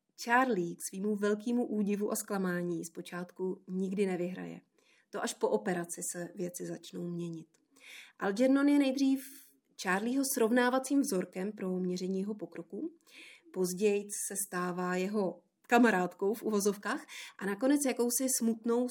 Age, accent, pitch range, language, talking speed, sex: 30-49, native, 180-220 Hz, Czech, 125 wpm, female